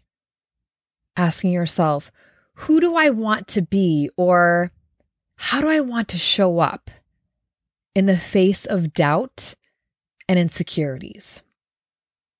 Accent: American